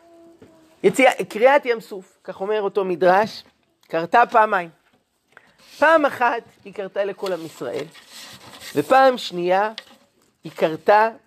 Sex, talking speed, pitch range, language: male, 110 wpm, 195-255 Hz, Hebrew